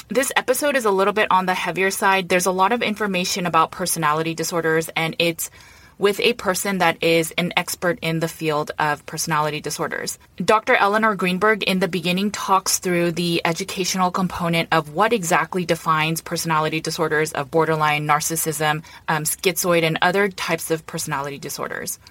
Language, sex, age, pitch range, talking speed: English, female, 20-39, 160-190 Hz, 165 wpm